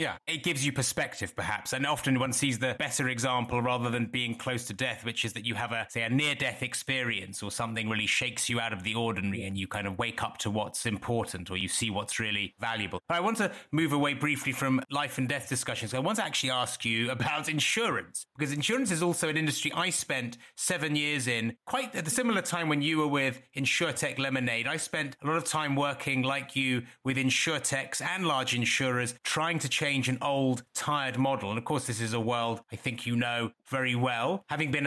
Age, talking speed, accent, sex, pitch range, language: 30-49, 225 wpm, British, male, 120-150 Hz, English